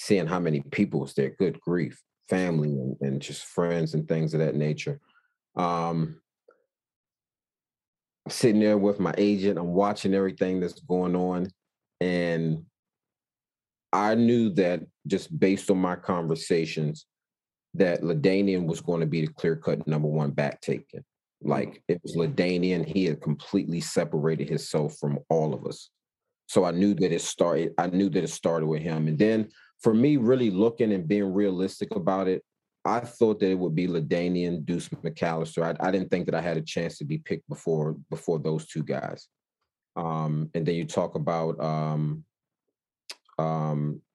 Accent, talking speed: American, 165 wpm